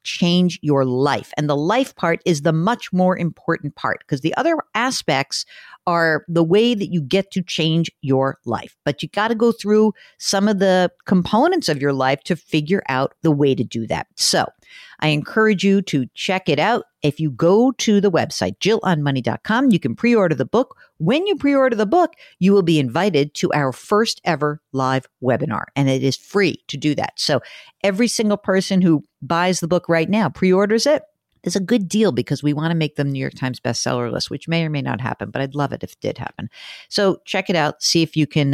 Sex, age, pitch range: female, 50-69, 140-200 Hz